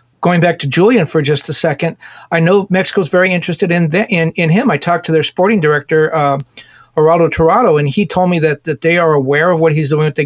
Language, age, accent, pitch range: English, 50-69, American, 150-180 Hz